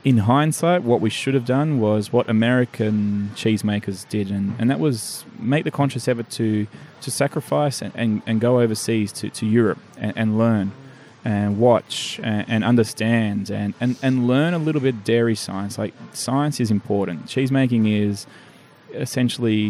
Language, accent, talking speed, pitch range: English, Australian, 170 wpm, 105-125 Hz